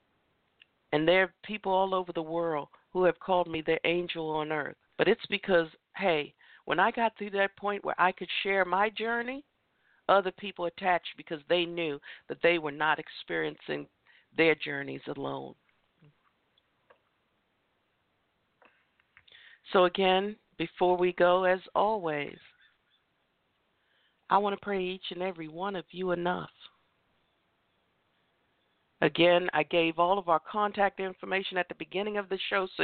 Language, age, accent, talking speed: English, 50-69, American, 145 wpm